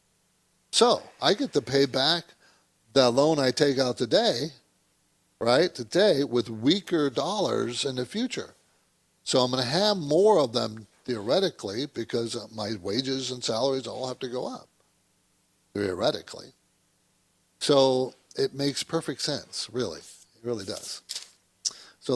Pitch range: 120-175 Hz